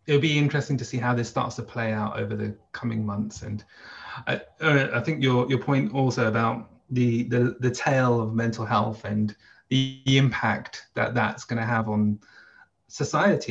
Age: 30-49